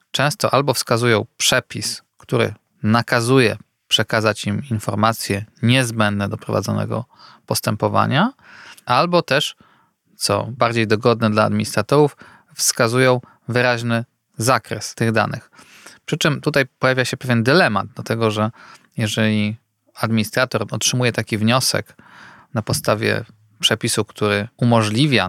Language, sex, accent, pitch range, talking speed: Polish, male, native, 110-130 Hz, 105 wpm